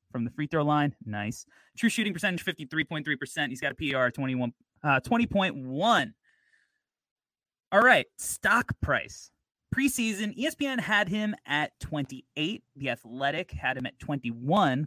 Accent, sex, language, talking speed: American, male, English, 130 wpm